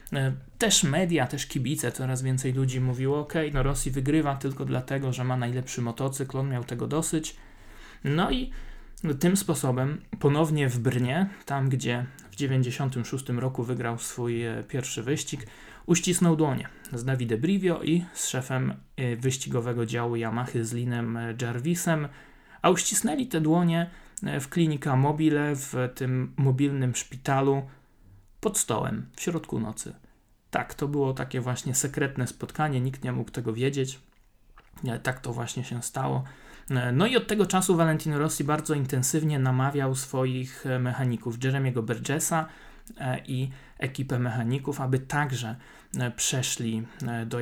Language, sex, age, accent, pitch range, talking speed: Polish, male, 20-39, native, 125-150 Hz, 135 wpm